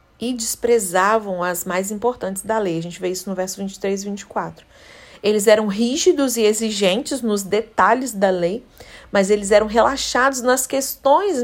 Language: Portuguese